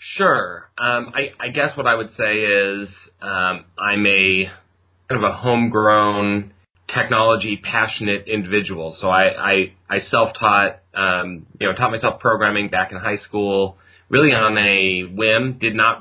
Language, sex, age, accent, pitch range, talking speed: English, male, 30-49, American, 90-105 Hz, 155 wpm